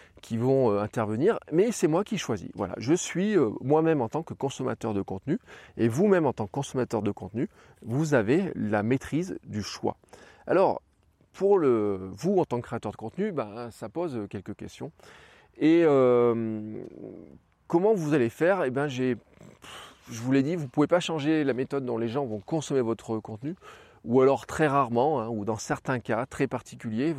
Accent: French